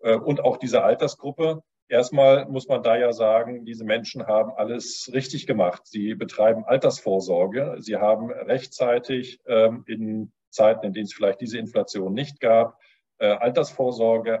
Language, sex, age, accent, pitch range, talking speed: German, male, 40-59, German, 110-135 Hz, 135 wpm